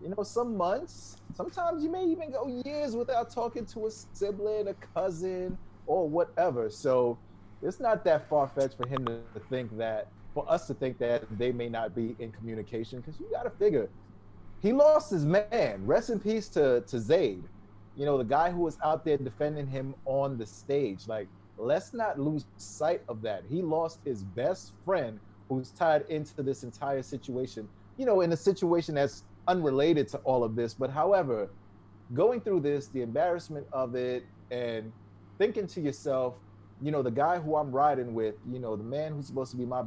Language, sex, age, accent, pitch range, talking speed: English, male, 30-49, American, 110-155 Hz, 195 wpm